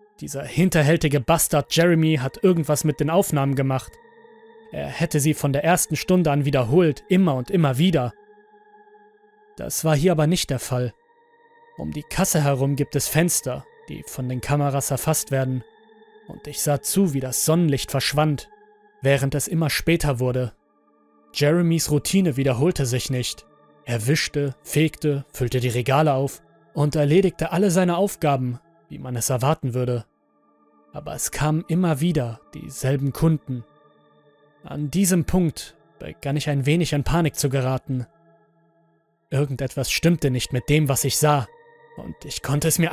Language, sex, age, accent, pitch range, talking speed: German, male, 30-49, German, 135-170 Hz, 150 wpm